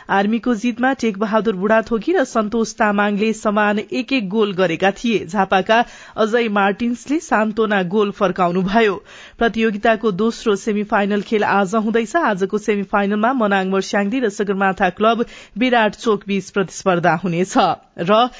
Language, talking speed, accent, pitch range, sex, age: English, 125 wpm, Indian, 200-235 Hz, female, 40-59